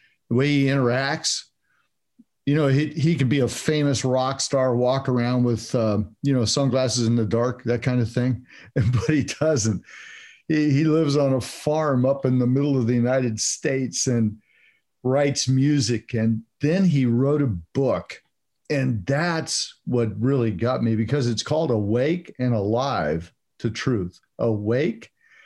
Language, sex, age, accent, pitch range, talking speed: English, male, 50-69, American, 115-145 Hz, 165 wpm